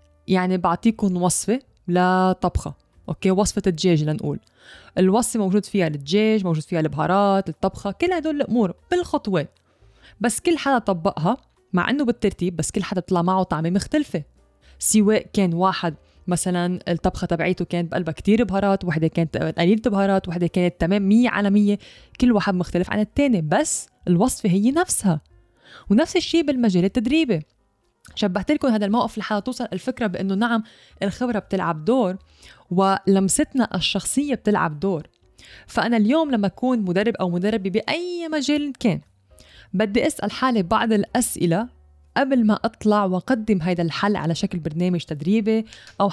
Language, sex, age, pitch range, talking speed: English, female, 20-39, 175-220 Hz, 140 wpm